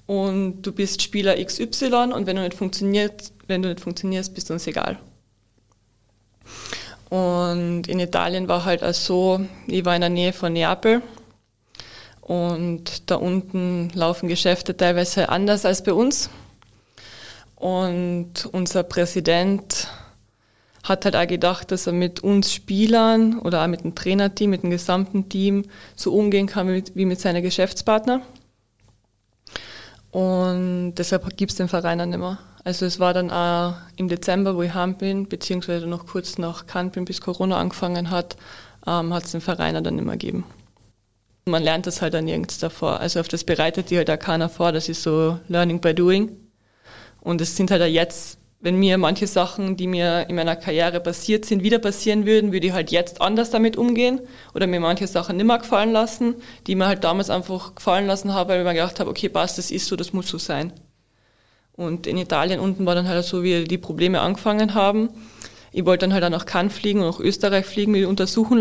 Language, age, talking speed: German, 20-39, 185 wpm